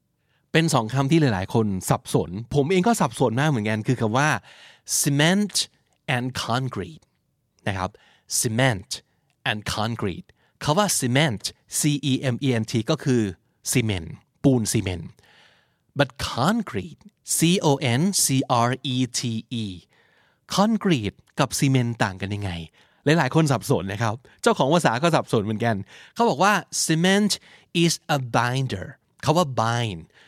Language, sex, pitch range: Thai, male, 110-155 Hz